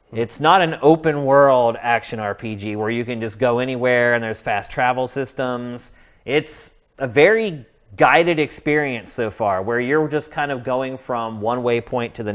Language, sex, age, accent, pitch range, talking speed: English, male, 30-49, American, 110-135 Hz, 175 wpm